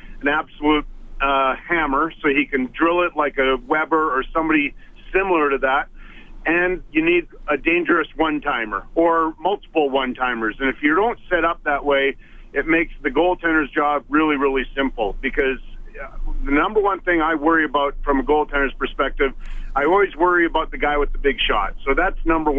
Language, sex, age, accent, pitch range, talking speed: English, male, 40-59, American, 140-175 Hz, 180 wpm